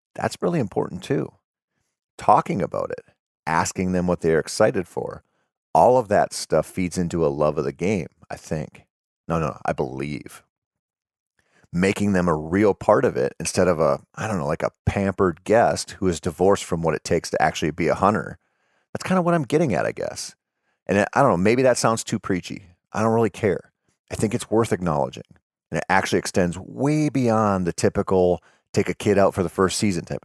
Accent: American